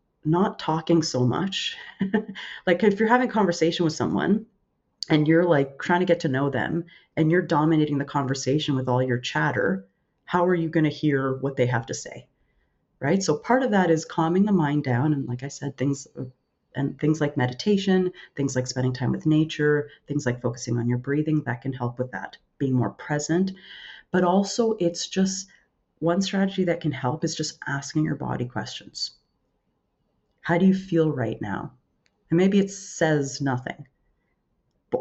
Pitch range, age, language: 135-180 Hz, 30-49, English